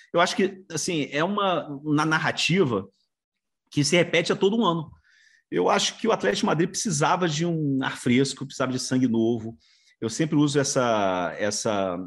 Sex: male